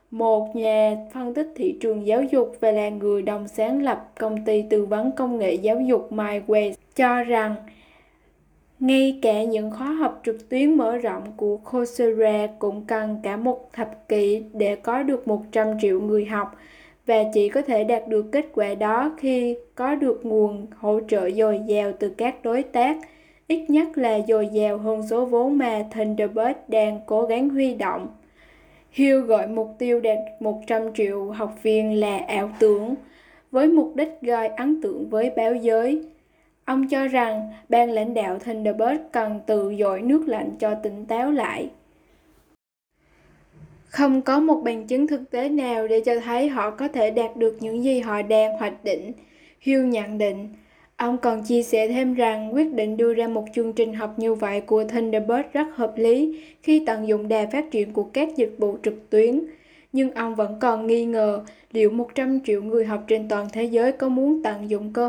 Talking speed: 185 wpm